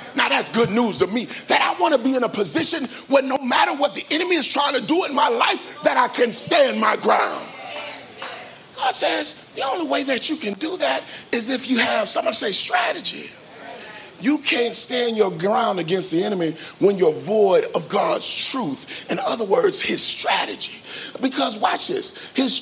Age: 40-59